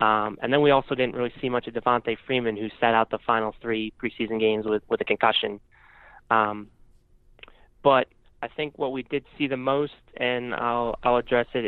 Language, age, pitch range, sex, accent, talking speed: English, 20-39, 110-120 Hz, male, American, 200 wpm